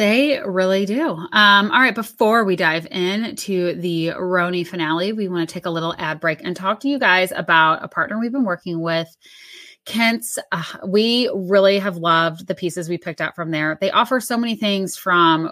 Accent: American